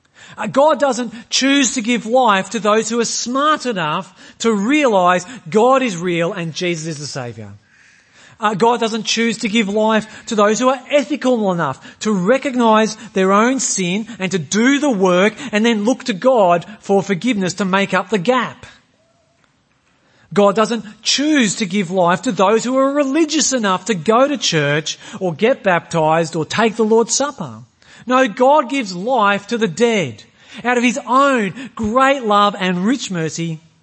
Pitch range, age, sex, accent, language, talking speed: 165-245 Hz, 40-59, male, Australian, English, 170 wpm